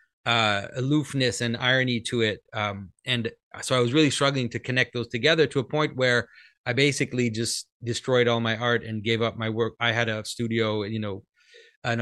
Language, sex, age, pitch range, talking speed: English, male, 30-49, 115-145 Hz, 200 wpm